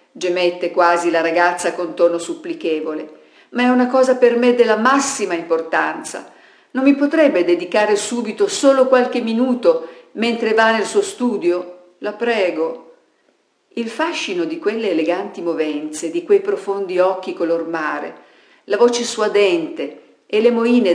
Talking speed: 140 wpm